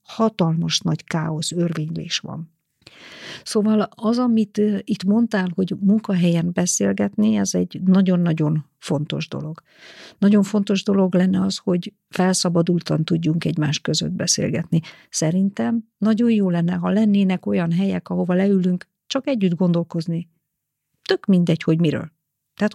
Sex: female